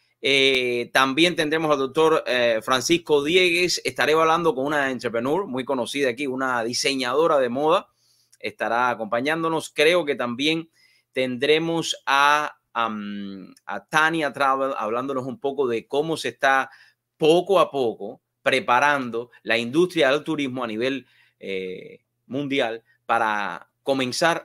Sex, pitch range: male, 120-155 Hz